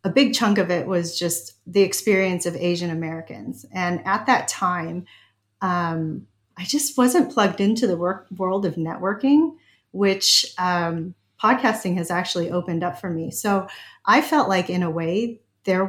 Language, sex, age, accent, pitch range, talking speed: English, female, 30-49, American, 175-215 Hz, 165 wpm